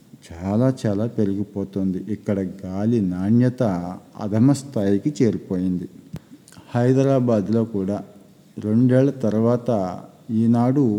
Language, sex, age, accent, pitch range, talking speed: Telugu, male, 50-69, native, 100-120 Hz, 75 wpm